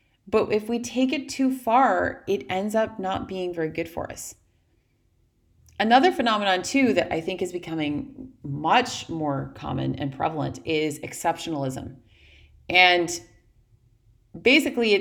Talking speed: 130 wpm